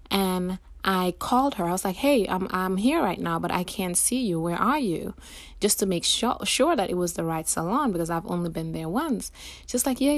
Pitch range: 165-210 Hz